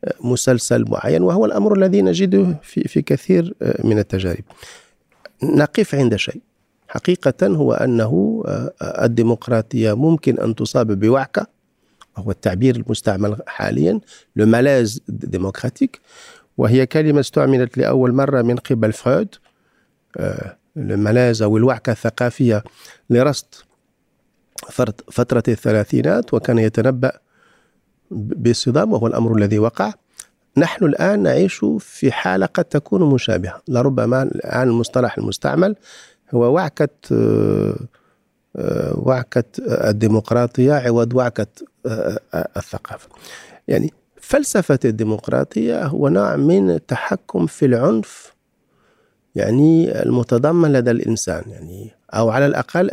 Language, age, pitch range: Arabic, 50-69, 110-145 Hz